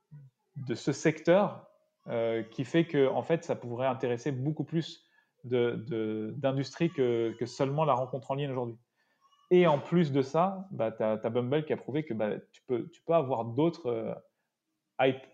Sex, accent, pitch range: male, French, 120-155 Hz